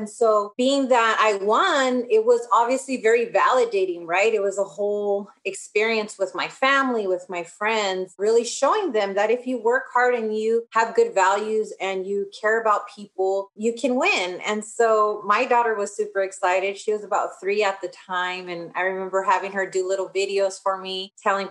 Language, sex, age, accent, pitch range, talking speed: English, female, 30-49, American, 185-225 Hz, 195 wpm